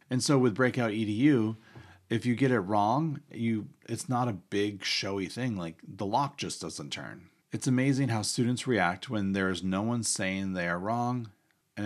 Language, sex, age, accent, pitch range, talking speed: English, male, 30-49, American, 95-125 Hz, 190 wpm